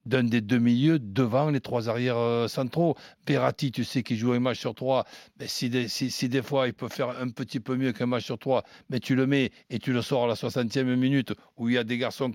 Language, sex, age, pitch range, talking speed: French, male, 60-79, 130-185 Hz, 265 wpm